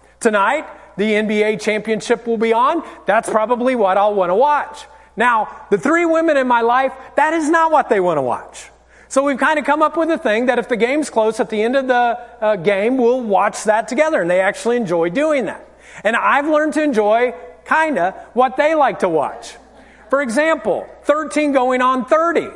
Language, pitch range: English, 230-310 Hz